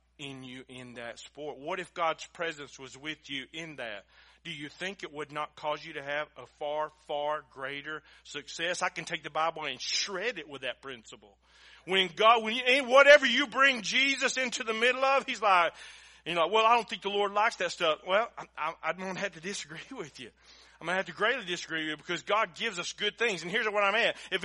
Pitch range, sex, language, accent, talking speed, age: 165-235 Hz, male, English, American, 235 wpm, 40-59